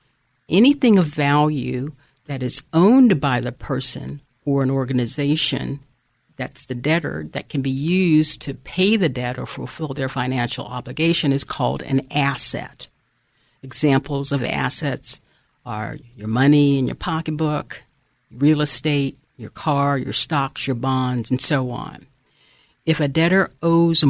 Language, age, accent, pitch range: English, 50-69, American, 130-155 Hz